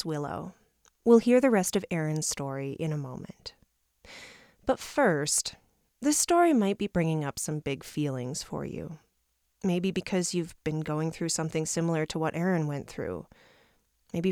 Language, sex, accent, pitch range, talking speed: English, female, American, 155-200 Hz, 160 wpm